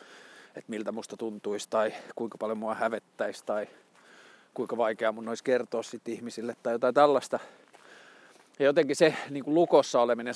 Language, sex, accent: Finnish, male, native